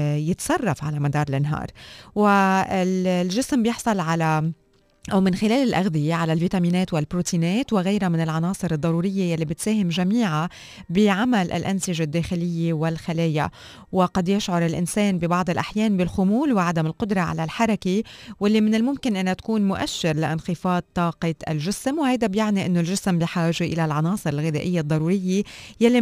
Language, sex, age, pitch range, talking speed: Arabic, female, 20-39, 165-200 Hz, 125 wpm